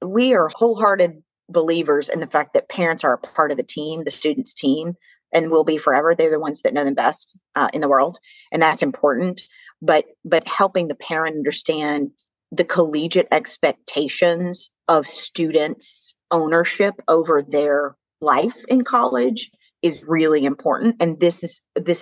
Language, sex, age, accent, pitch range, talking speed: English, female, 30-49, American, 155-185 Hz, 165 wpm